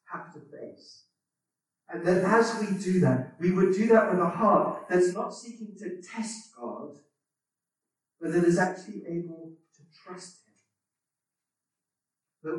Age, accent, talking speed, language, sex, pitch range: 40-59, British, 150 wpm, English, male, 160-210 Hz